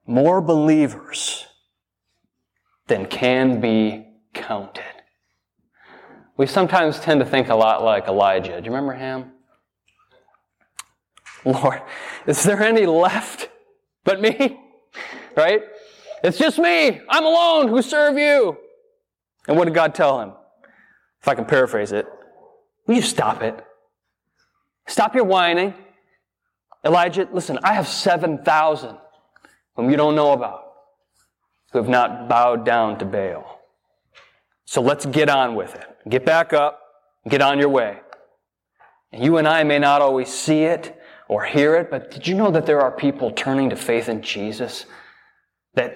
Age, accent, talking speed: 20-39, American, 140 wpm